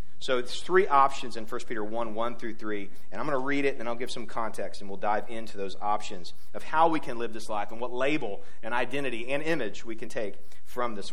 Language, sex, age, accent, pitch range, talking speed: English, male, 40-59, American, 105-145 Hz, 260 wpm